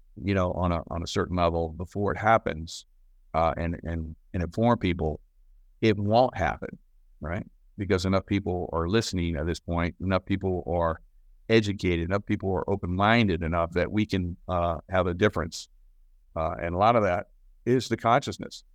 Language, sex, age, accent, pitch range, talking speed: English, male, 50-69, American, 85-105 Hz, 175 wpm